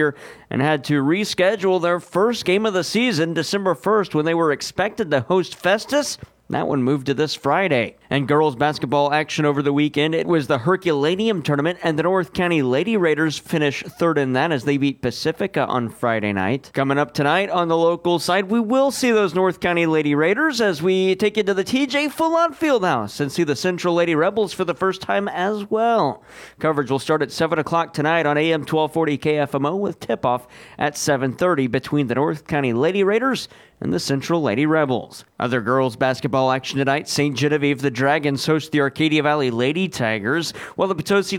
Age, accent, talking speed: 40-59, American, 195 wpm